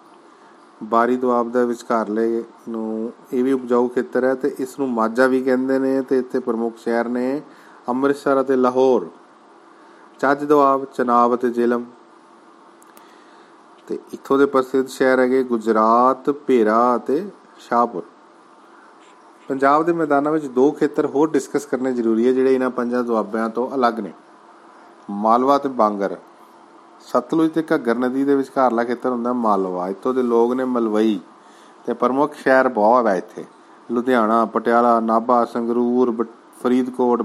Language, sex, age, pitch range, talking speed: Punjabi, male, 40-59, 115-135 Hz, 105 wpm